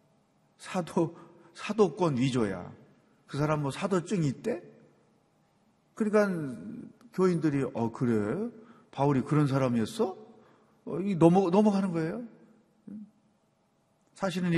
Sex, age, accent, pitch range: male, 40-59, native, 135-185 Hz